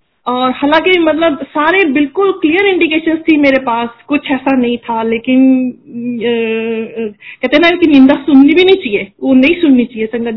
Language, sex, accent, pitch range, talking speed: Hindi, female, native, 220-285 Hz, 175 wpm